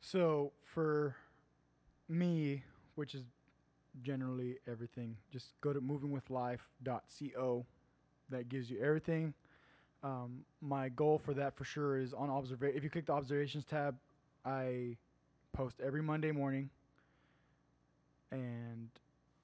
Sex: male